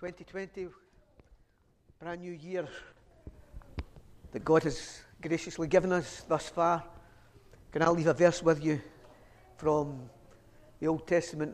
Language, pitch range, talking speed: English, 115-170 Hz, 120 wpm